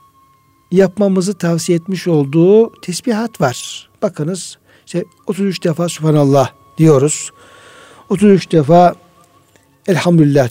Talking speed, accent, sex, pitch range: 85 wpm, native, male, 145-180 Hz